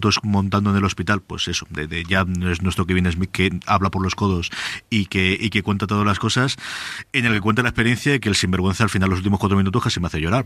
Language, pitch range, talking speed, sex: Spanish, 95-115 Hz, 265 wpm, male